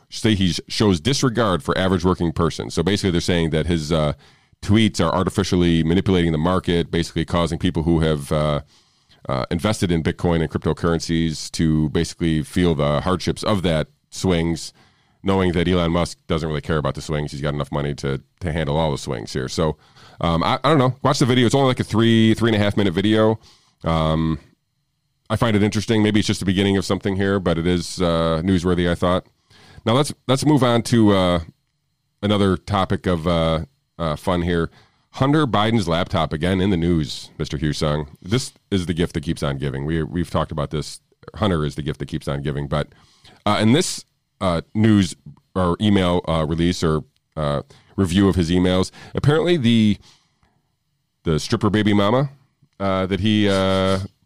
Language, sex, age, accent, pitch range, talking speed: English, male, 40-59, American, 80-105 Hz, 190 wpm